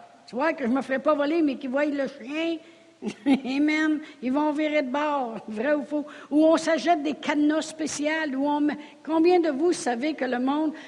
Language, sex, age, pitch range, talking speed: French, female, 60-79, 250-310 Hz, 215 wpm